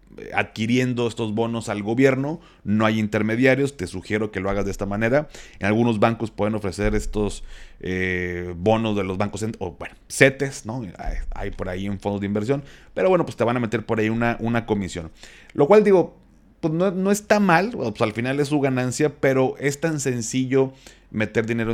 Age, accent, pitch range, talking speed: 30-49, Mexican, 105-135 Hz, 195 wpm